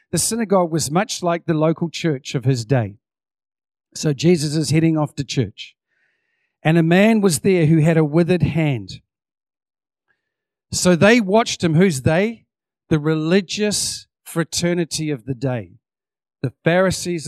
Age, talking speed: 50-69, 145 wpm